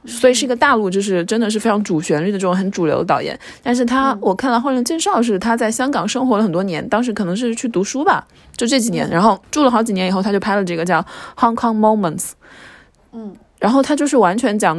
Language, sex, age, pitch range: Chinese, female, 20-39, 180-230 Hz